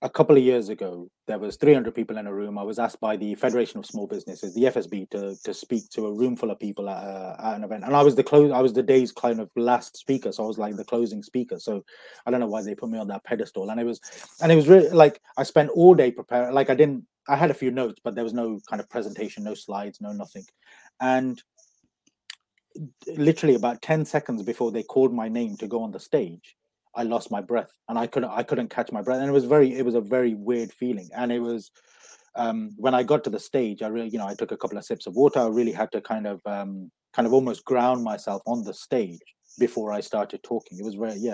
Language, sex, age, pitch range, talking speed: English, male, 30-49, 110-135 Hz, 265 wpm